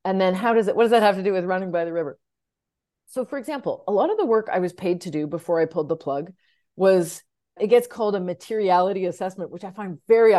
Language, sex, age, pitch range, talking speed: English, female, 40-59, 160-210 Hz, 260 wpm